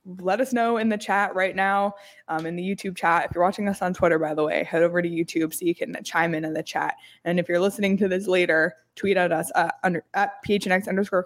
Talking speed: 260 wpm